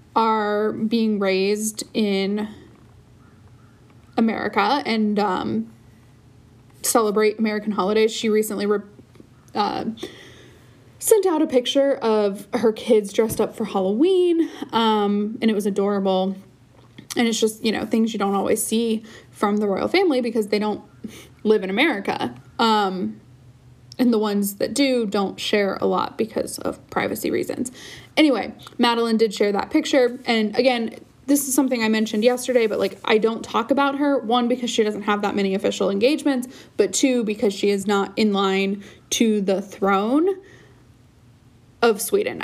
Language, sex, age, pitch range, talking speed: English, female, 20-39, 195-245 Hz, 150 wpm